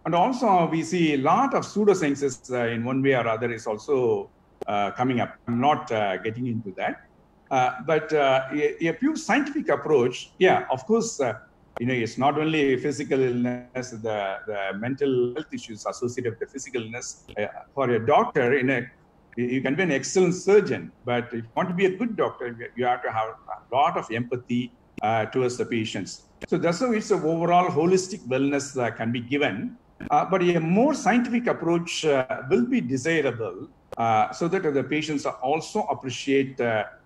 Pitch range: 120-170 Hz